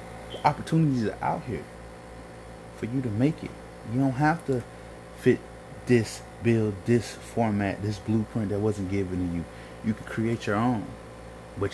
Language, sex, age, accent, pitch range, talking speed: English, male, 30-49, American, 105-140 Hz, 160 wpm